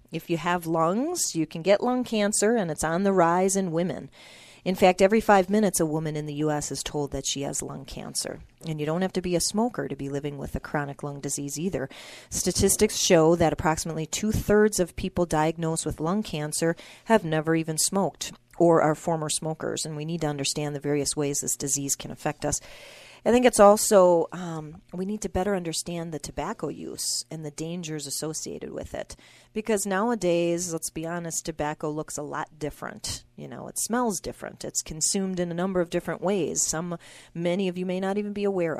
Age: 40-59